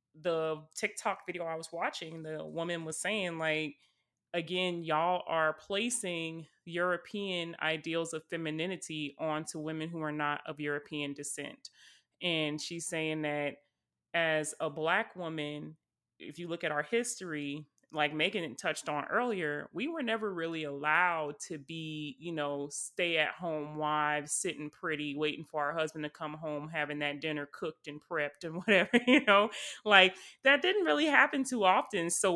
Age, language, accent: 30-49, English, American